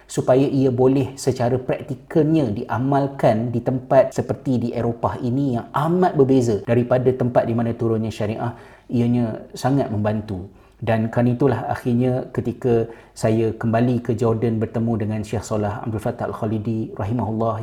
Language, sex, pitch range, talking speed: Malay, male, 110-125 Hz, 140 wpm